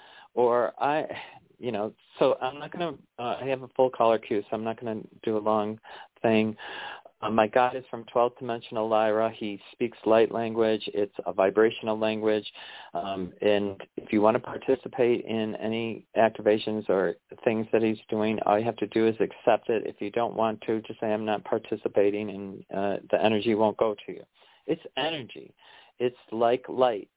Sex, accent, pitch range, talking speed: male, American, 110-125 Hz, 190 wpm